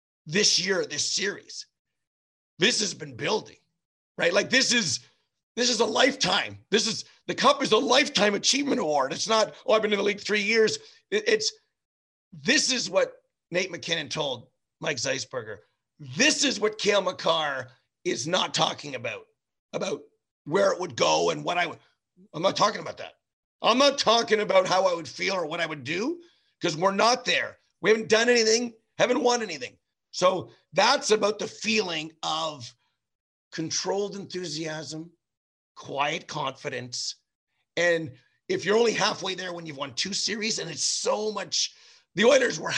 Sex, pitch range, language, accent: male, 180-260 Hz, English, American